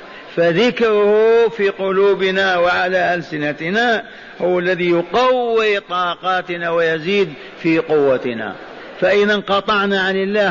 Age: 50-69